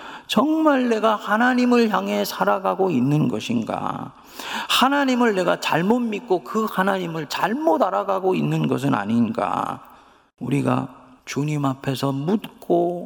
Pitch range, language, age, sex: 135-195 Hz, Korean, 40-59, male